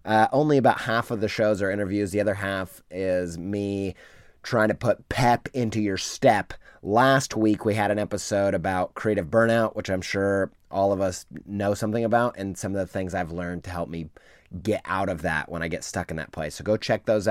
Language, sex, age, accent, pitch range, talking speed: English, male, 30-49, American, 95-120 Hz, 220 wpm